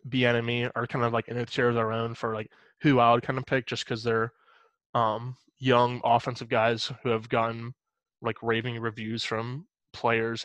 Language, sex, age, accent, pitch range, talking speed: English, male, 20-39, American, 115-135 Hz, 200 wpm